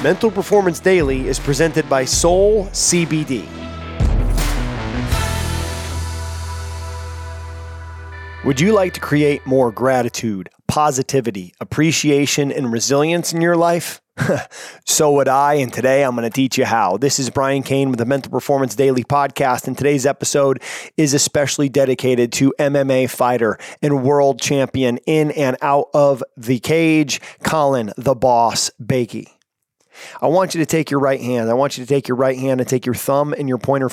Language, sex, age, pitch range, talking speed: English, male, 30-49, 120-140 Hz, 155 wpm